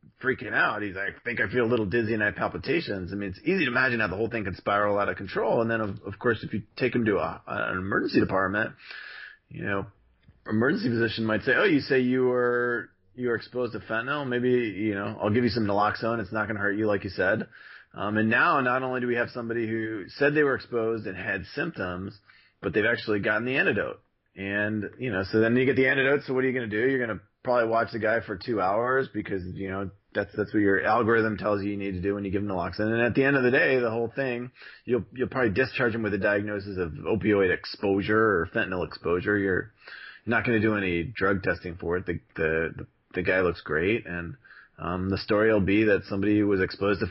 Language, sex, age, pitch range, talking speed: English, male, 30-49, 100-120 Hz, 250 wpm